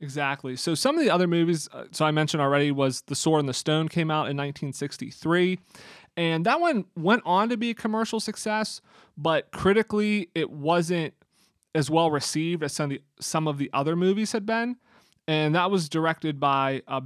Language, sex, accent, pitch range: English, male, American, 145-170 Hz